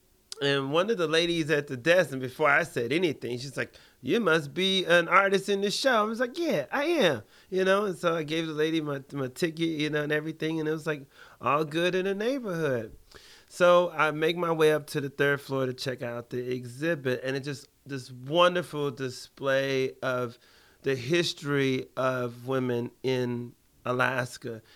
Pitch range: 130-160 Hz